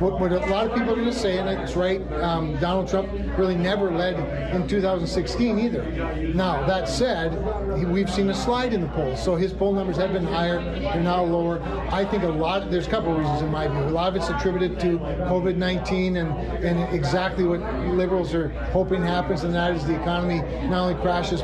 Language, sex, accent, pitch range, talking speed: English, male, American, 170-185 Hz, 215 wpm